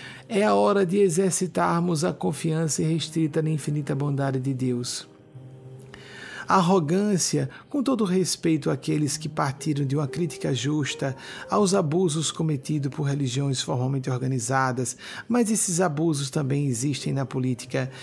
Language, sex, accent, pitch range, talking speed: Portuguese, male, Brazilian, 140-180 Hz, 125 wpm